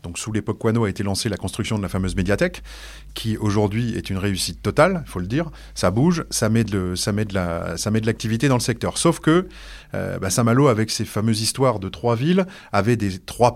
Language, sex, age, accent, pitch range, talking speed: French, male, 30-49, French, 100-125 Hz, 240 wpm